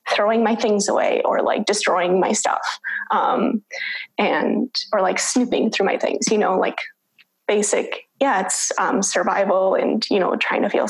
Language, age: English, 20-39